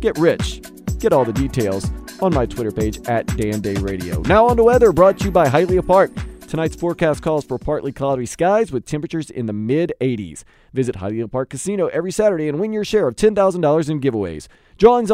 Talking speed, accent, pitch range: 195 wpm, American, 135-185 Hz